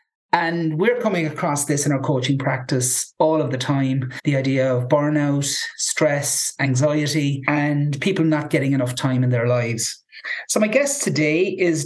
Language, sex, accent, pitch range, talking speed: English, male, Irish, 145-185 Hz, 165 wpm